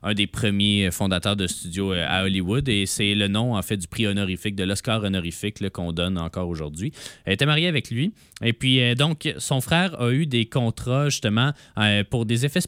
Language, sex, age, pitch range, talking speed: French, male, 20-39, 95-140 Hz, 205 wpm